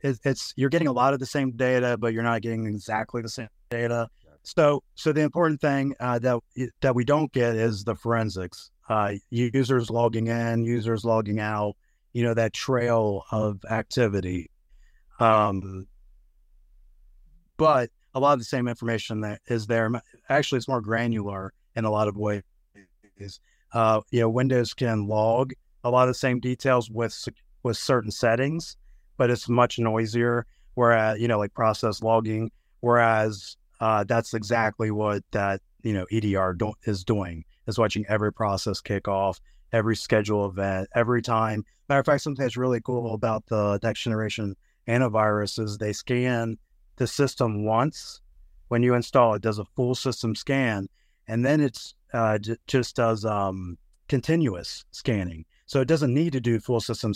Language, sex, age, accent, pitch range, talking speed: English, male, 30-49, American, 105-125 Hz, 165 wpm